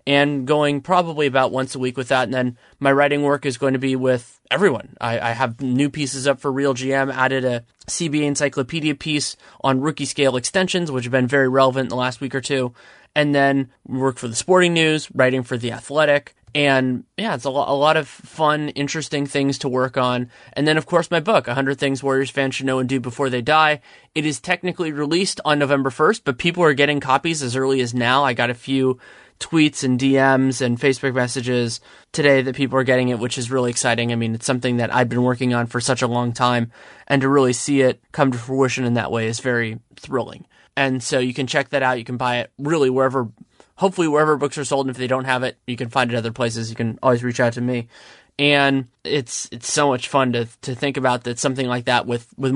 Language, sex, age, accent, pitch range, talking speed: English, male, 20-39, American, 125-145 Hz, 235 wpm